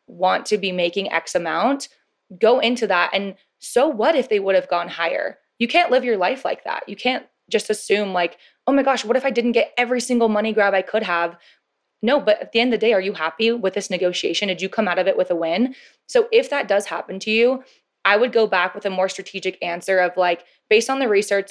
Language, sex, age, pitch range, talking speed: English, female, 20-39, 180-230 Hz, 250 wpm